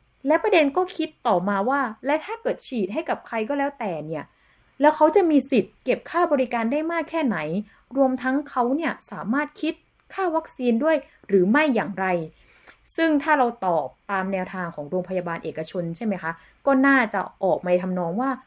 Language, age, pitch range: Thai, 20-39, 190-270 Hz